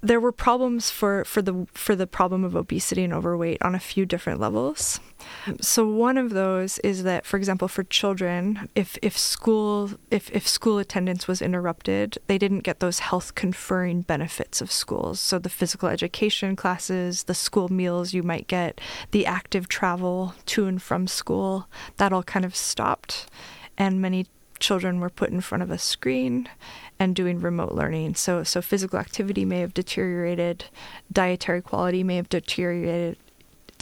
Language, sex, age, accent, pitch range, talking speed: English, female, 20-39, American, 180-205 Hz, 170 wpm